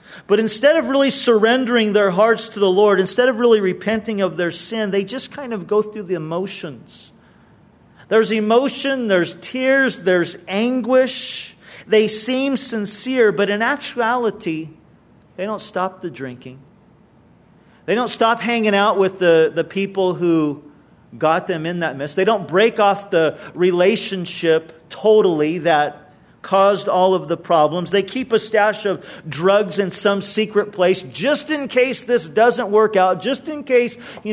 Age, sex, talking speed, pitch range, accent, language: 40-59, male, 160 wpm, 165-225 Hz, American, English